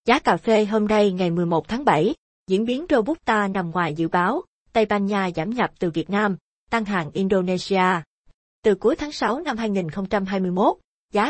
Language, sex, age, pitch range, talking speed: Vietnamese, female, 20-39, 180-220 Hz, 180 wpm